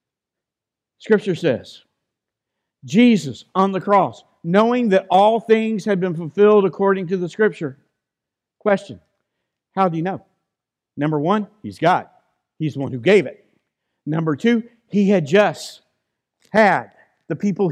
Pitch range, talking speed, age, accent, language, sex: 160-210 Hz, 135 wpm, 60-79, American, English, male